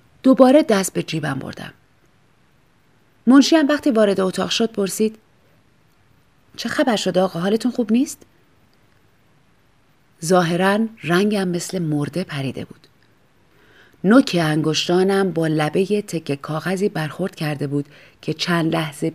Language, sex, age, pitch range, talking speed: Persian, female, 30-49, 155-215 Hz, 115 wpm